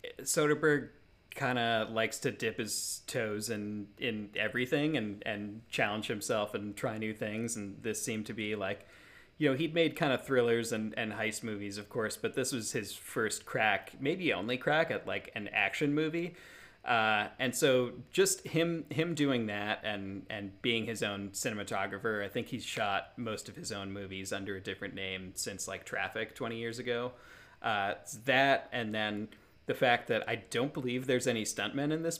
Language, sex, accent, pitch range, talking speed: English, male, American, 100-135 Hz, 185 wpm